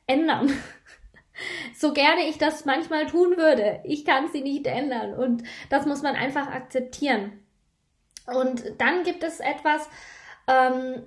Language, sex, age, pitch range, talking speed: German, female, 20-39, 250-305 Hz, 135 wpm